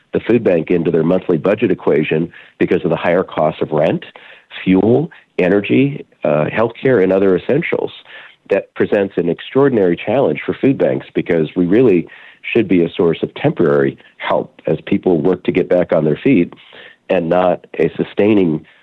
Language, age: English, 40-59